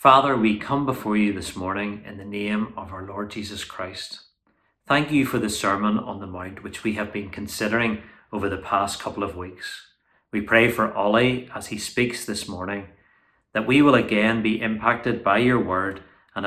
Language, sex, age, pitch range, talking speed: English, male, 30-49, 95-110 Hz, 195 wpm